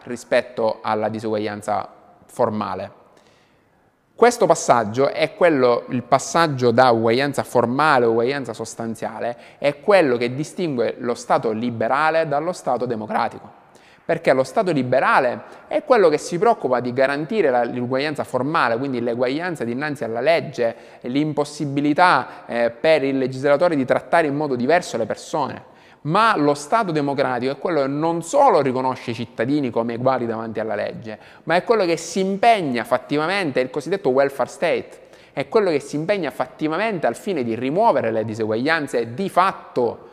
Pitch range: 120-170 Hz